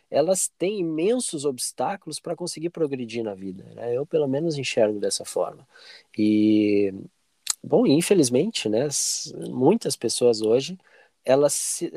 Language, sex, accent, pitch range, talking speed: Portuguese, male, Brazilian, 125-170 Hz, 125 wpm